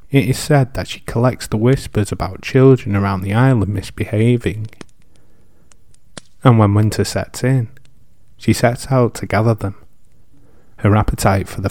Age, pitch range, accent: 30-49, 100-125 Hz, British